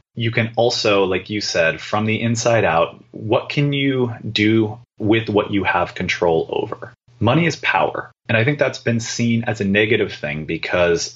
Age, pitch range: 30-49, 100-120 Hz